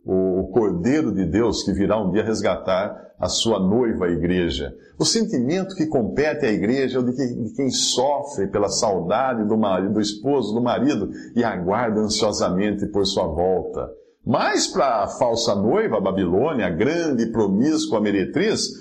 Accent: Brazilian